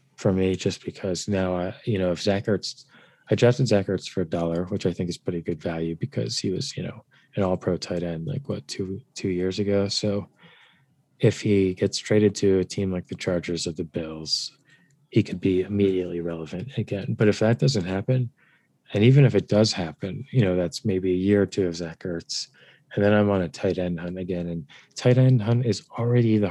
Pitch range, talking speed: 90-105 Hz, 220 wpm